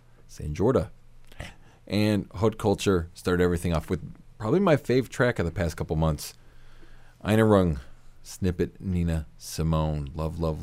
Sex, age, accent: male, 40-59, American